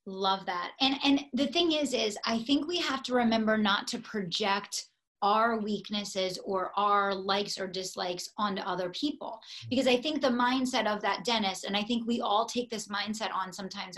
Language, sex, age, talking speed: English, female, 30-49, 195 wpm